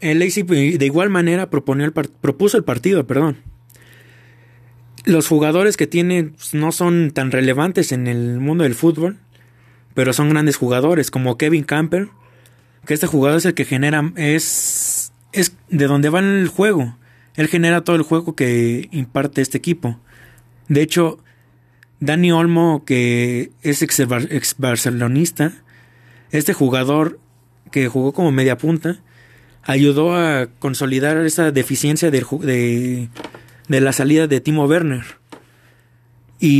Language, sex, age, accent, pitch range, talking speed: Spanish, male, 30-49, Mexican, 125-160 Hz, 135 wpm